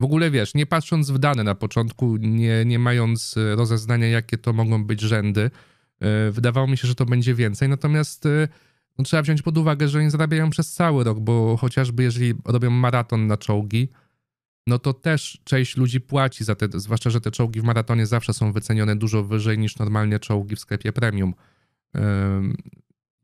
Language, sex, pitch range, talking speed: Polish, male, 110-135 Hz, 185 wpm